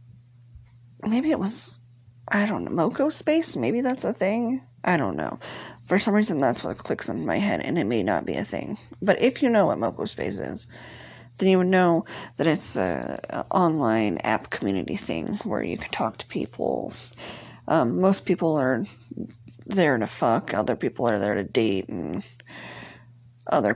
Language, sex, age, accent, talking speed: English, female, 40-59, American, 180 wpm